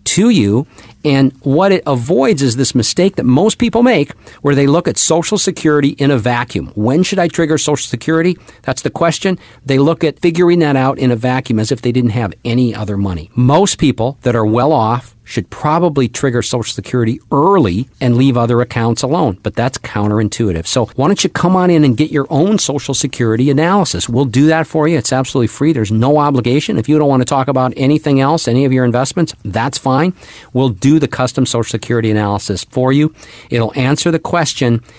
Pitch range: 115-150 Hz